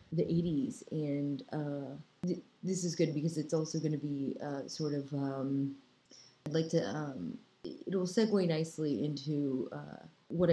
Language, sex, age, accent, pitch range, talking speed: English, female, 30-49, American, 145-180 Hz, 155 wpm